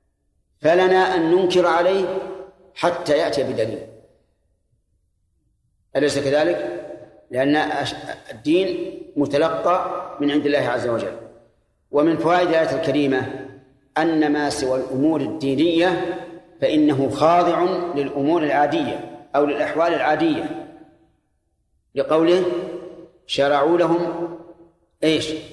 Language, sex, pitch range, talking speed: Arabic, male, 140-175 Hz, 85 wpm